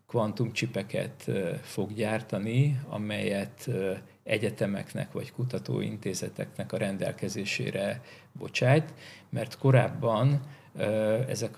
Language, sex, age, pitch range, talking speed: Hungarian, male, 50-69, 105-130 Hz, 65 wpm